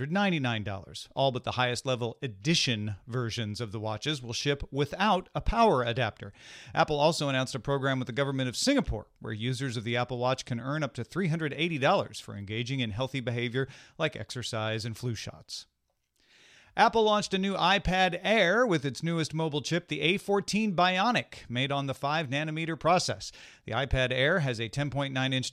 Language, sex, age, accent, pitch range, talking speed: English, male, 40-59, American, 120-160 Hz, 175 wpm